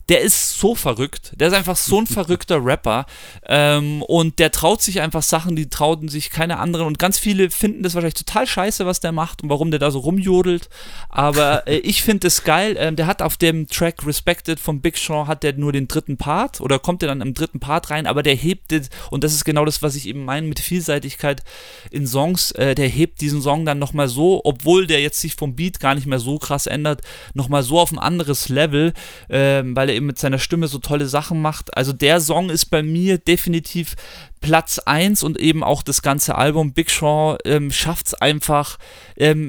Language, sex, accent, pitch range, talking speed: German, male, German, 140-170 Hz, 225 wpm